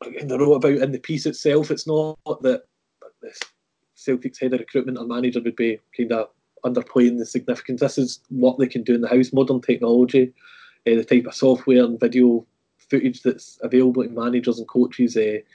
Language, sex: English, male